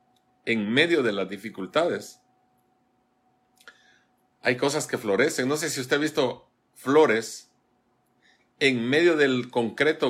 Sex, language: male, English